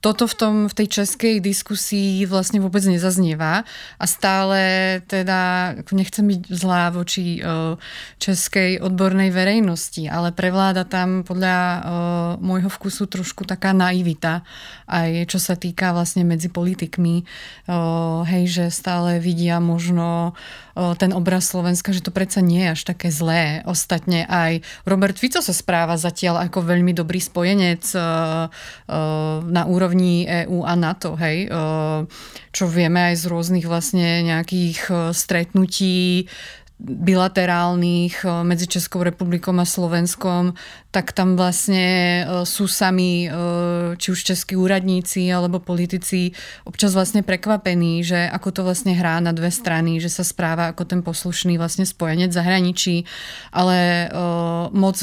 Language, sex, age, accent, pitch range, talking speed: Czech, female, 30-49, native, 170-185 Hz, 130 wpm